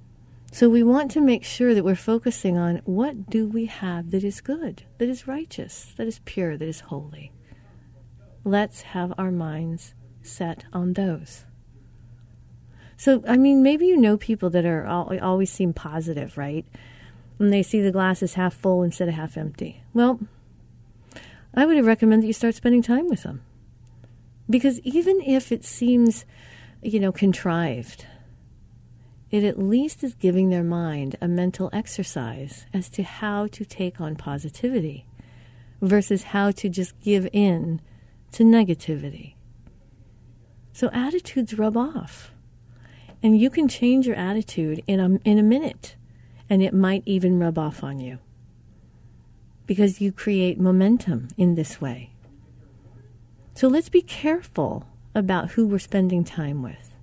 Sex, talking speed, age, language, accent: female, 150 wpm, 50-69, English, American